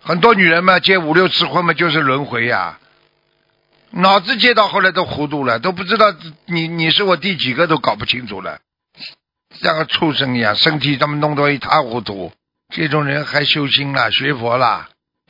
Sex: male